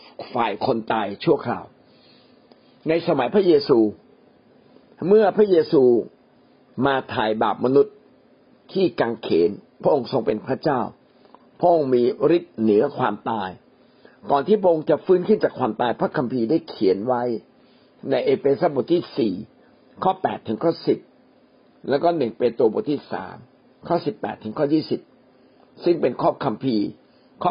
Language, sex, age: Thai, male, 60-79